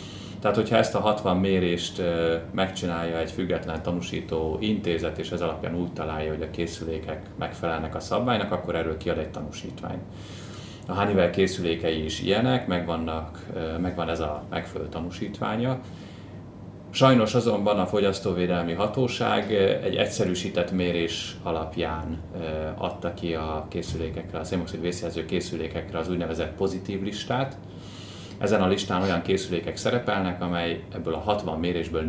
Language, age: Hungarian, 30-49